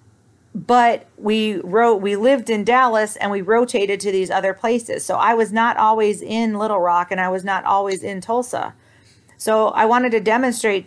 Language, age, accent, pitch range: English, 40-59, American, 175-225 Hz